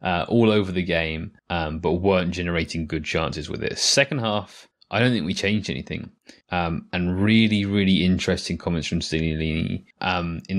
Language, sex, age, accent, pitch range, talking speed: English, male, 20-39, British, 85-100 Hz, 175 wpm